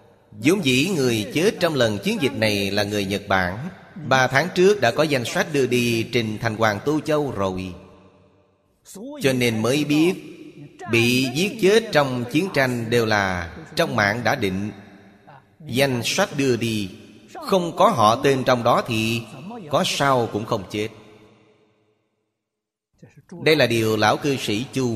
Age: 30-49